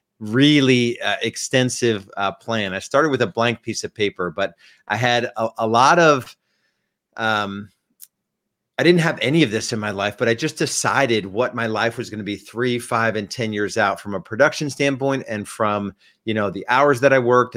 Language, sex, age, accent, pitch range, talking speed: English, male, 40-59, American, 105-125 Hz, 205 wpm